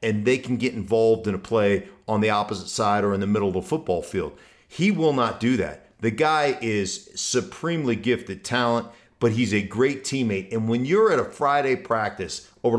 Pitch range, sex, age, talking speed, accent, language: 105-130 Hz, male, 50-69, 205 wpm, American, English